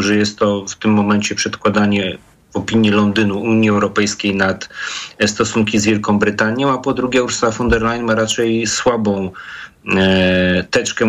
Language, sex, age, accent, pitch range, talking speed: Polish, male, 40-59, native, 105-130 Hz, 155 wpm